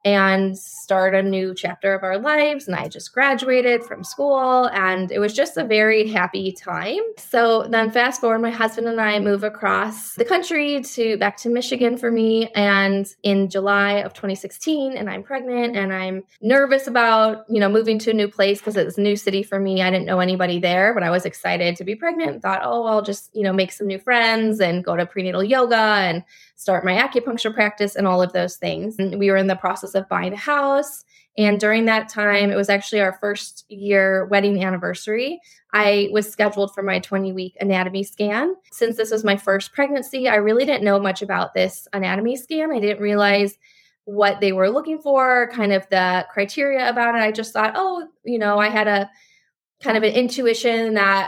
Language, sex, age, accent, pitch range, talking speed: English, female, 20-39, American, 195-235 Hz, 210 wpm